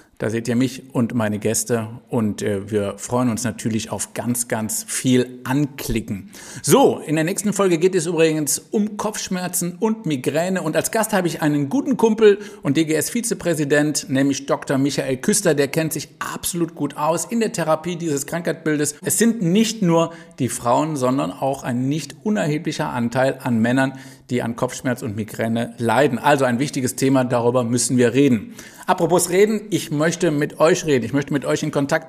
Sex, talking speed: male, 180 wpm